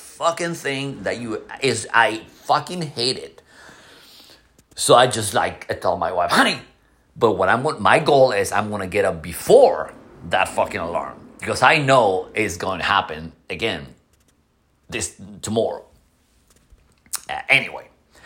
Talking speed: 140 wpm